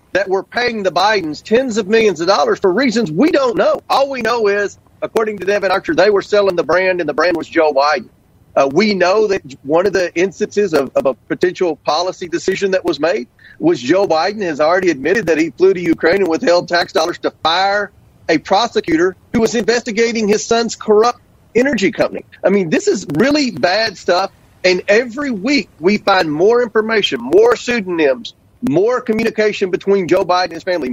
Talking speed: 200 wpm